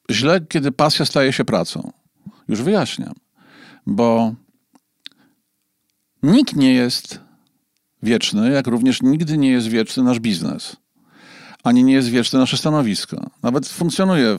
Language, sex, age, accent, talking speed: Polish, male, 50-69, native, 120 wpm